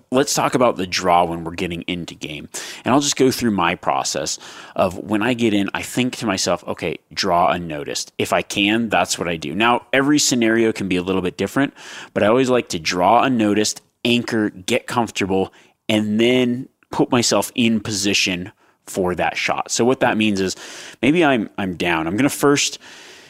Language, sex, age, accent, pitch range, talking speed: English, male, 30-49, American, 95-120 Hz, 200 wpm